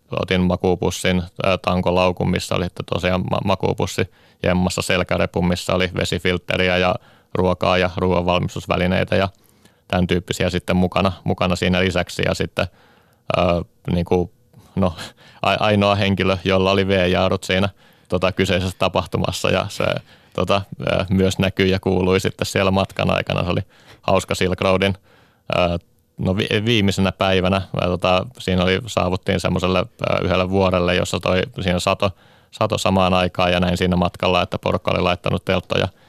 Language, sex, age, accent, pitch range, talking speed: Finnish, male, 30-49, native, 90-100 Hz, 135 wpm